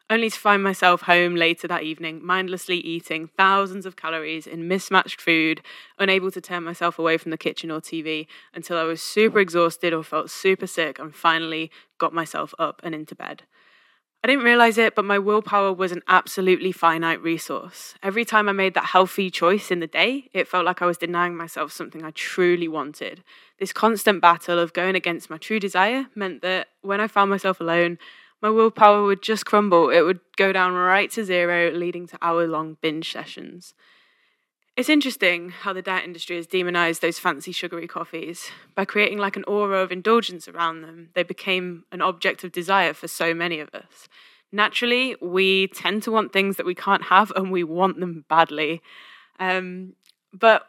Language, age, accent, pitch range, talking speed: English, 20-39, British, 170-200 Hz, 185 wpm